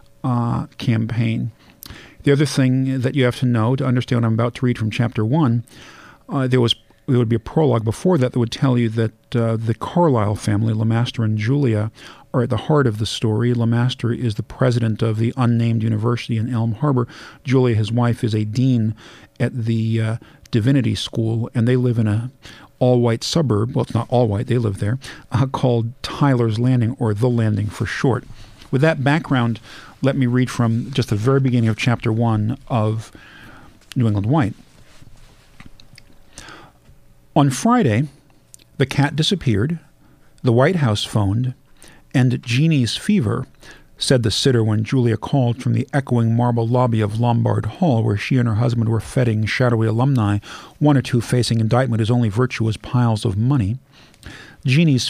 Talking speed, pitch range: 175 wpm, 115-130 Hz